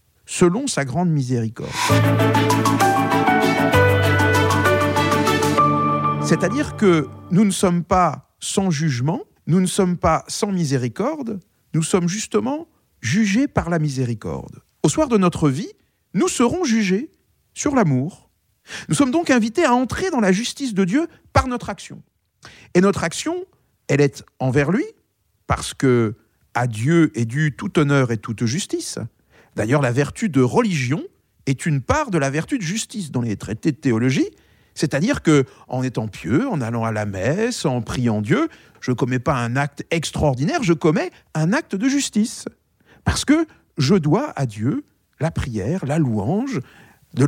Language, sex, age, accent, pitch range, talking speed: French, male, 50-69, French, 120-200 Hz, 155 wpm